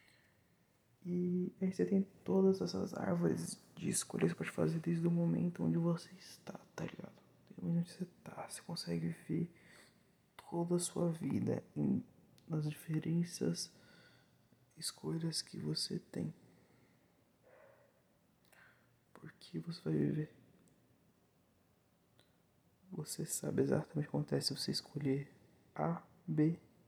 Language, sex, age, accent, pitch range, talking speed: Portuguese, male, 20-39, Brazilian, 150-170 Hz, 125 wpm